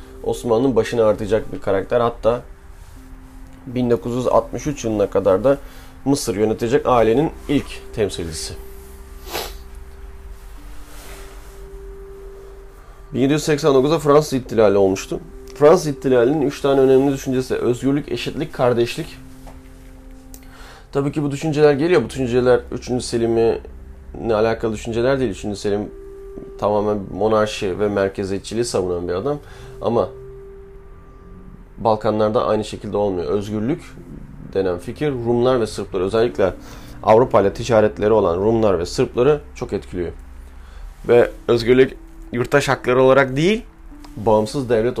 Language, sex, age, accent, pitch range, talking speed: Turkish, male, 30-49, native, 90-130 Hz, 105 wpm